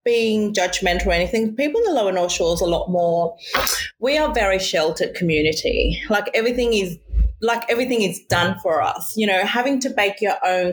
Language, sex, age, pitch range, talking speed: English, female, 30-49, 175-240 Hz, 190 wpm